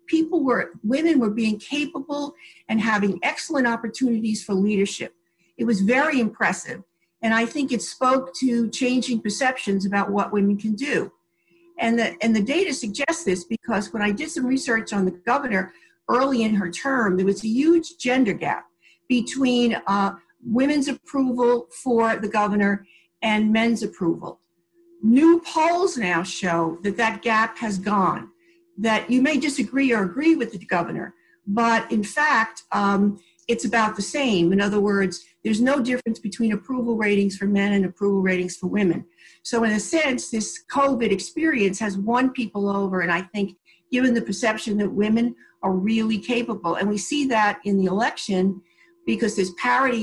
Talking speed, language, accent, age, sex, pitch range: 165 wpm, English, American, 50-69, female, 195-255 Hz